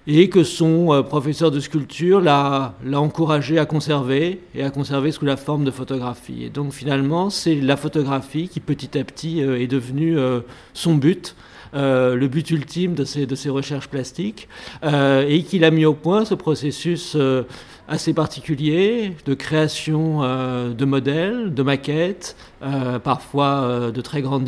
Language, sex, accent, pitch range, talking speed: French, male, French, 130-160 Hz, 175 wpm